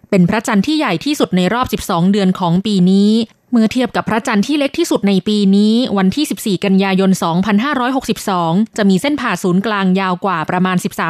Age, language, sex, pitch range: 20-39, Thai, female, 185-230 Hz